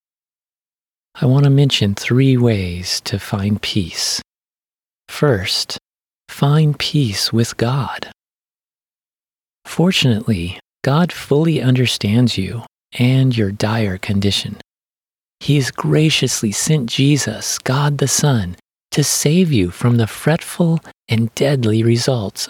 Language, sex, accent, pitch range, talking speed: English, male, American, 105-145 Hz, 105 wpm